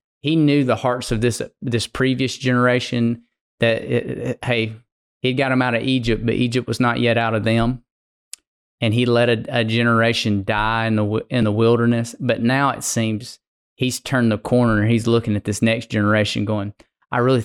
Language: English